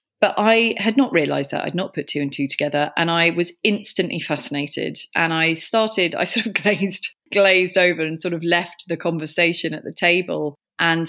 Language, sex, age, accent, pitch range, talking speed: English, female, 30-49, British, 150-185 Hz, 200 wpm